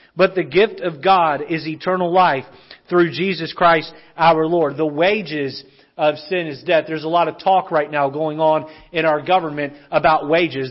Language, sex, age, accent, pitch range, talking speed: English, male, 40-59, American, 170-220 Hz, 185 wpm